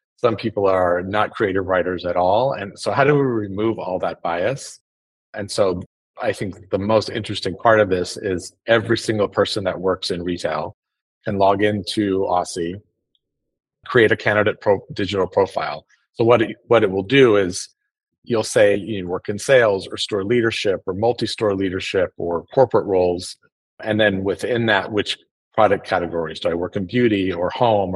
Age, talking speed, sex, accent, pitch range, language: 40-59, 170 wpm, male, American, 90-110 Hz, English